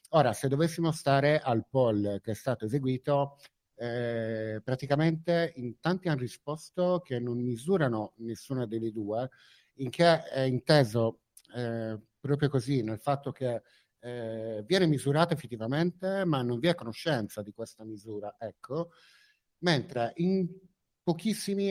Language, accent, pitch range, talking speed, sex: Italian, native, 120-160 Hz, 135 wpm, male